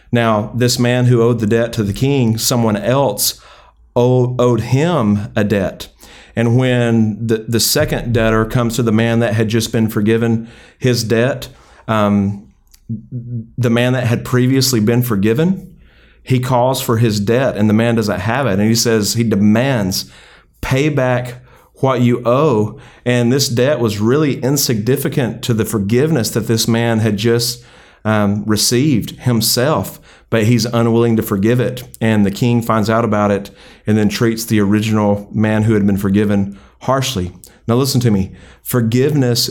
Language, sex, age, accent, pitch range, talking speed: English, male, 40-59, American, 110-125 Hz, 165 wpm